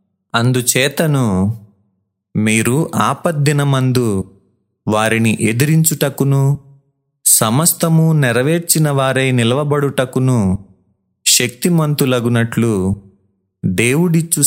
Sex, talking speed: male, 50 wpm